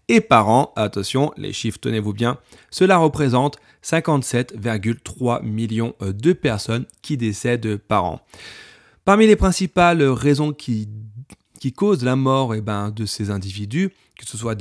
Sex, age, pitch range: male, 30-49, 110-135 Hz